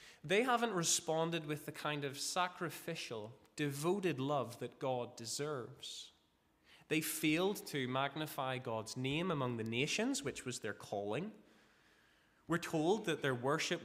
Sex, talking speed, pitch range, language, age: male, 135 wpm, 125-170 Hz, English, 20-39